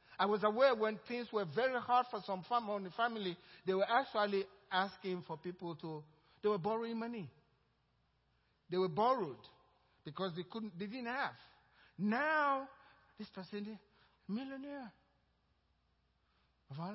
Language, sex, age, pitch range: English, male, 60-79, 180-245 Hz